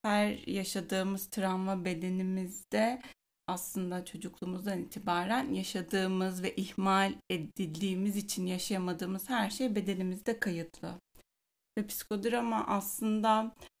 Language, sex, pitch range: Turkish, female, 195-230 Hz